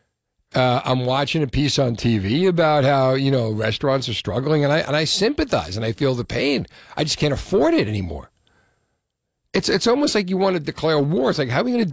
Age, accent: 60-79, American